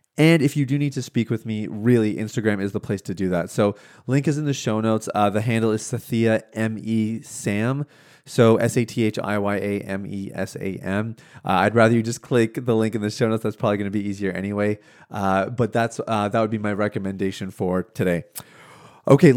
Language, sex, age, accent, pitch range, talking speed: English, male, 30-49, American, 105-135 Hz, 230 wpm